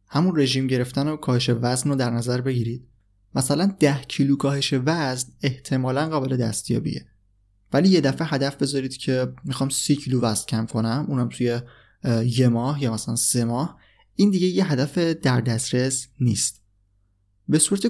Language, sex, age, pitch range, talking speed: Persian, male, 20-39, 115-150 Hz, 160 wpm